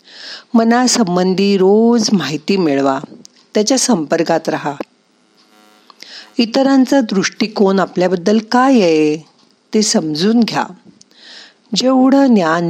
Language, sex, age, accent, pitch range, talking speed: Marathi, female, 50-69, native, 165-235 Hz, 55 wpm